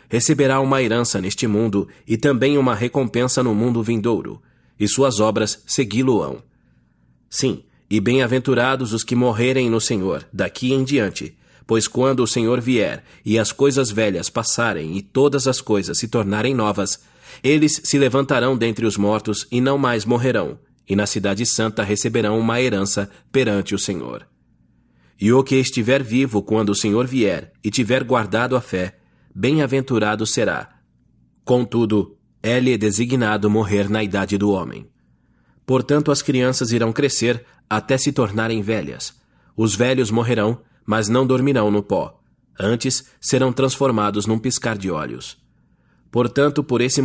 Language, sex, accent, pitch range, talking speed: English, male, Brazilian, 105-130 Hz, 150 wpm